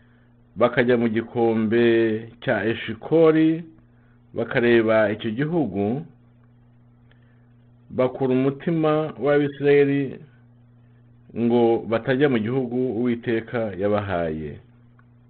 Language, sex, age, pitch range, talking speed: English, male, 50-69, 115-145 Hz, 65 wpm